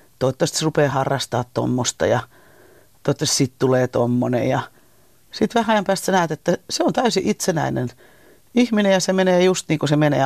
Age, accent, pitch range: 40-59, native, 130-165 Hz